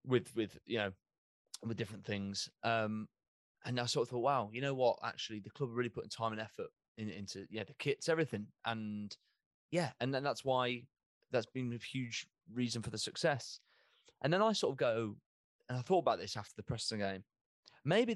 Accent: British